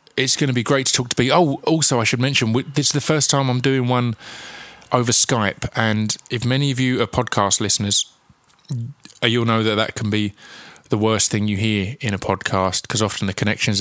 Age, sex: 20-39, male